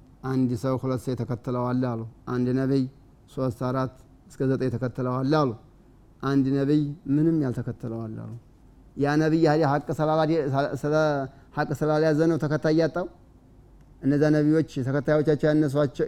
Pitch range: 130-160 Hz